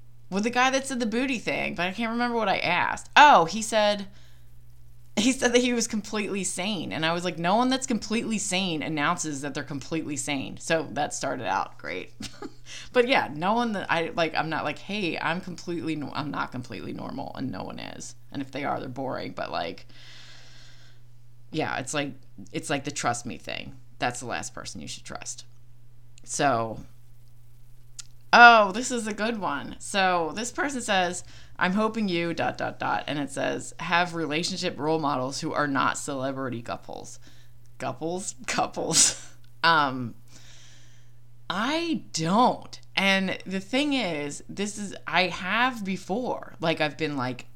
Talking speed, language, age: 175 wpm, English, 20-39